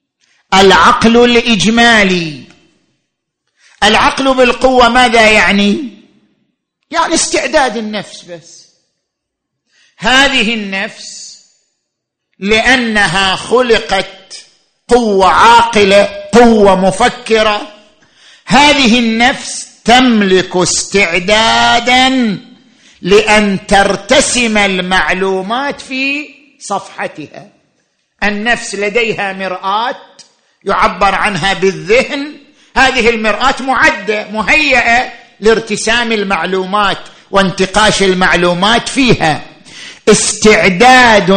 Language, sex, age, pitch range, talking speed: Arabic, male, 50-69, 195-250 Hz, 60 wpm